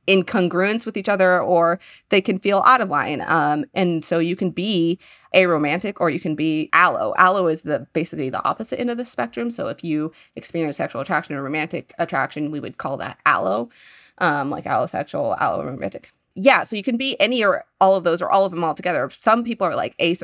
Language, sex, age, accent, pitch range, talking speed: English, female, 20-39, American, 160-215 Hz, 215 wpm